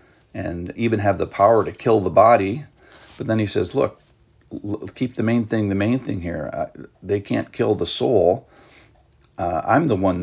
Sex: male